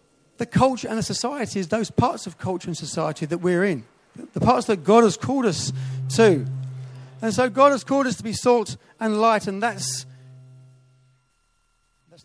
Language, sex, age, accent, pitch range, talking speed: English, male, 40-59, British, 175-230 Hz, 180 wpm